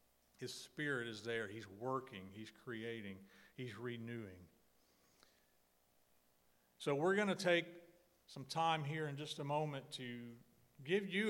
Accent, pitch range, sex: American, 120-160 Hz, male